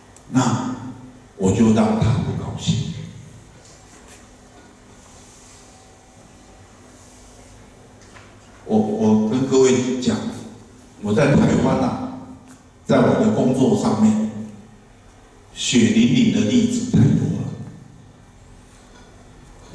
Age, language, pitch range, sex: 60-79, Chinese, 110-135 Hz, male